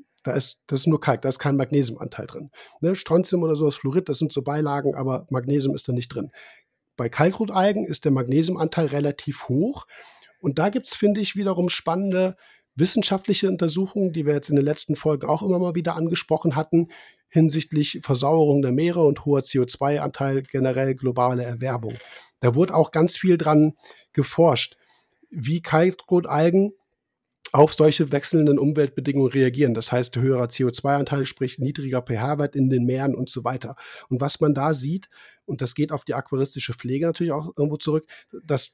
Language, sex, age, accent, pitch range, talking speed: German, male, 50-69, German, 130-170 Hz, 170 wpm